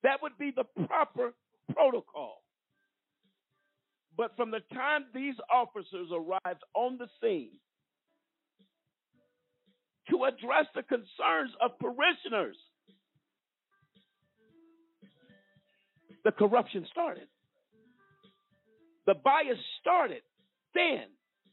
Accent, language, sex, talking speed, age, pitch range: American, English, male, 80 wpm, 50-69, 190-290 Hz